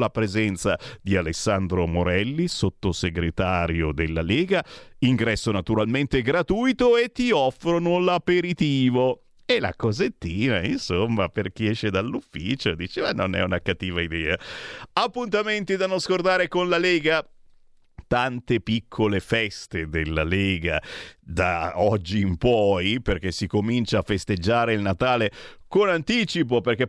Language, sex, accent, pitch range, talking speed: Italian, male, native, 95-140 Hz, 125 wpm